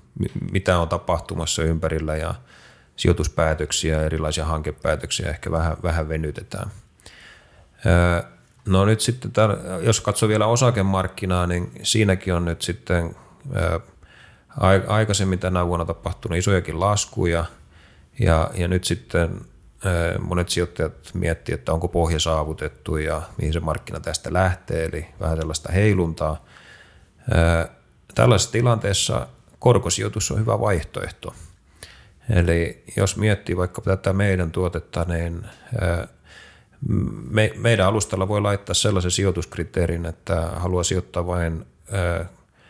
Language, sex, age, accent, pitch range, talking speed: Finnish, male, 30-49, native, 80-100 Hz, 100 wpm